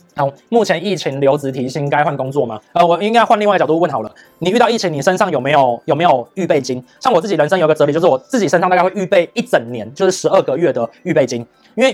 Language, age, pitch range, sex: Chinese, 20-39, 145-195 Hz, male